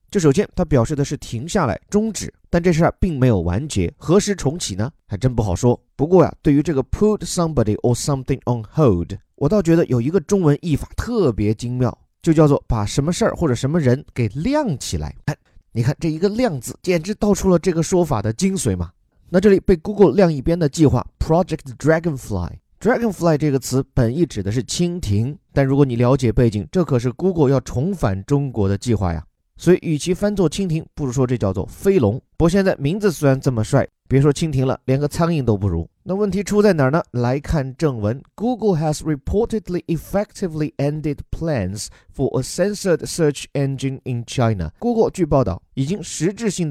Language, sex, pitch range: Chinese, male, 120-175 Hz